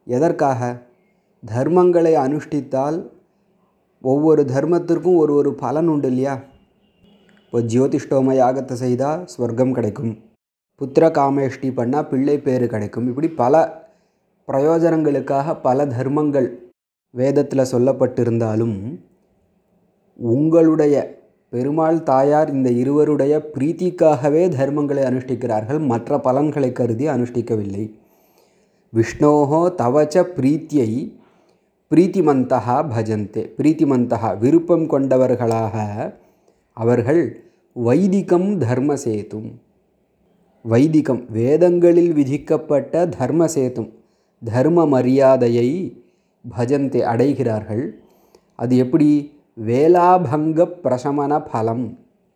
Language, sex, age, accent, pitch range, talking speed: Tamil, male, 30-49, native, 120-155 Hz, 75 wpm